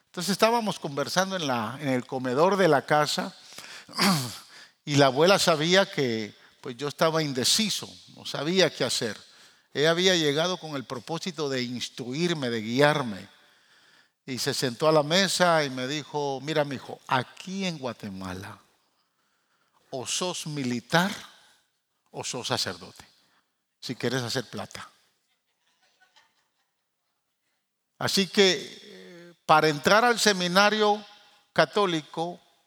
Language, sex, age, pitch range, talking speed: Spanish, male, 50-69, 135-200 Hz, 120 wpm